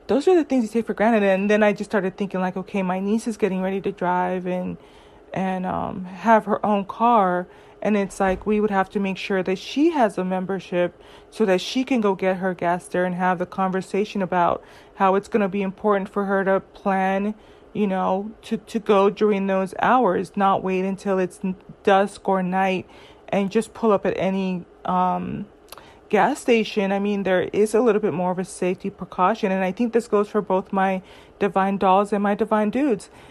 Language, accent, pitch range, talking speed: English, American, 190-220 Hz, 215 wpm